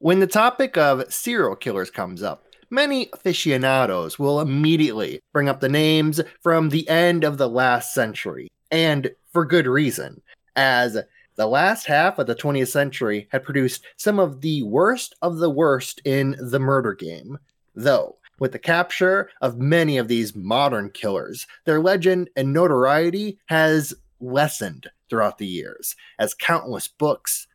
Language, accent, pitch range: English, American, 125-165 Hz